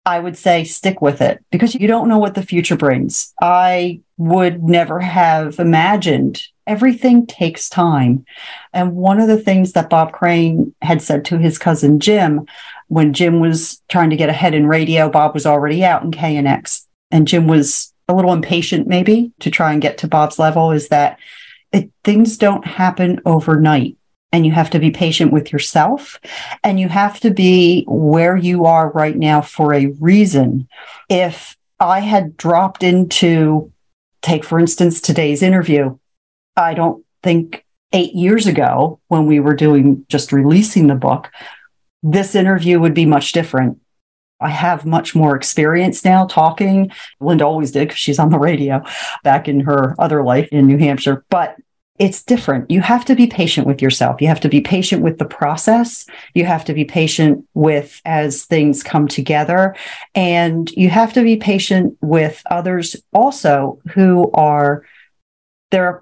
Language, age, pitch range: English, 40-59, 150-185 Hz